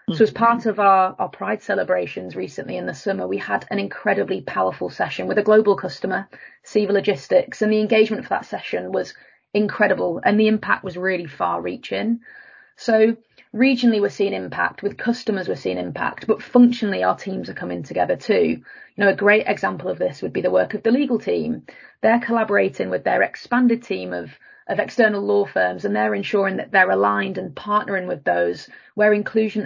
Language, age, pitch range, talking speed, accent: English, 30-49, 175-225 Hz, 190 wpm, British